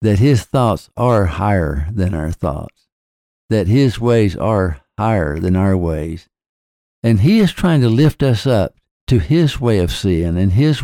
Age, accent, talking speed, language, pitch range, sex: 60-79, American, 170 wpm, English, 85-120 Hz, male